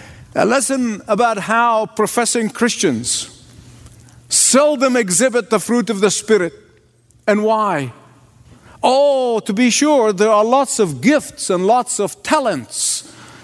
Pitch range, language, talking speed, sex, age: 190-245 Hz, English, 125 wpm, male, 50-69